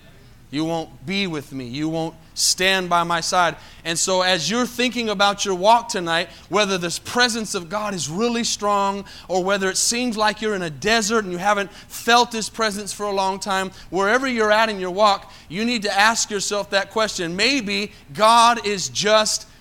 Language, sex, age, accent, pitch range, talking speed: English, male, 30-49, American, 165-205 Hz, 195 wpm